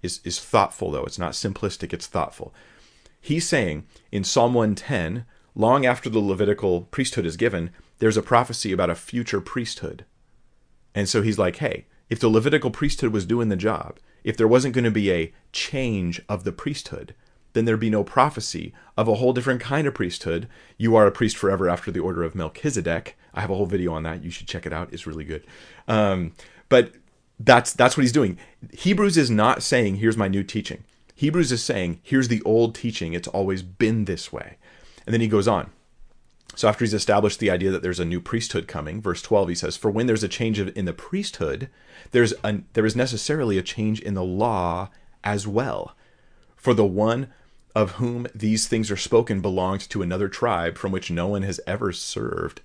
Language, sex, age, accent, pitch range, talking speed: English, male, 30-49, American, 95-115 Hz, 200 wpm